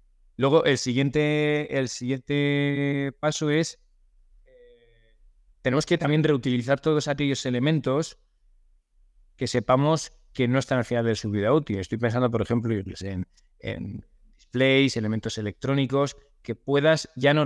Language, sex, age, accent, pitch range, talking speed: Spanish, male, 20-39, Spanish, 110-135 Hz, 130 wpm